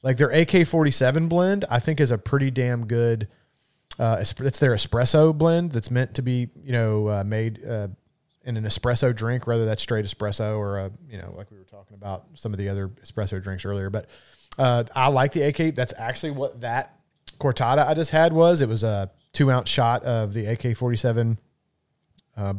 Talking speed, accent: 200 wpm, American